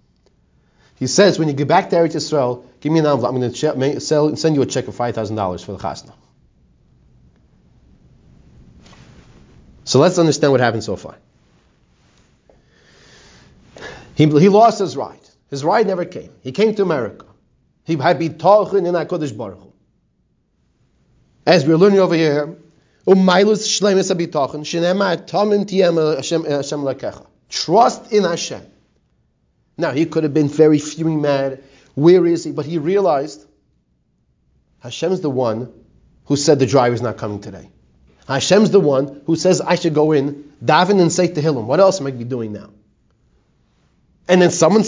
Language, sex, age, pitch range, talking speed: English, male, 30-49, 135-180 Hz, 140 wpm